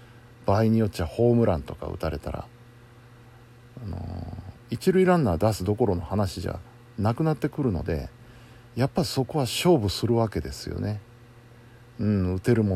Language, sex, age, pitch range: Japanese, male, 50-69, 95-120 Hz